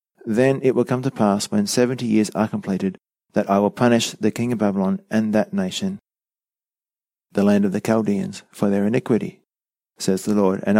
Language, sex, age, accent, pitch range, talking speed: English, male, 30-49, Australian, 105-130 Hz, 190 wpm